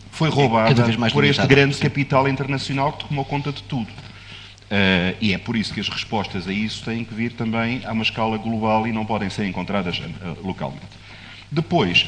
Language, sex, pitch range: Portuguese, male, 95-130 Hz